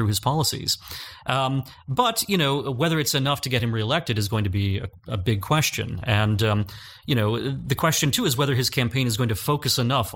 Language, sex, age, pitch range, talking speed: English, male, 30-49, 105-130 Hz, 220 wpm